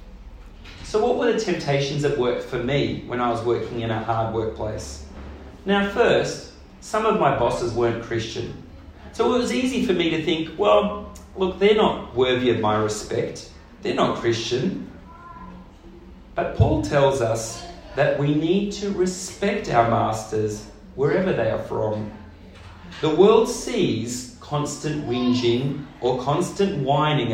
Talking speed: 145 wpm